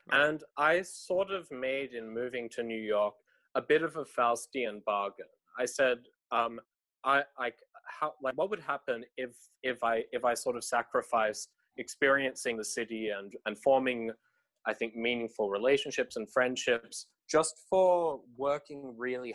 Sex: male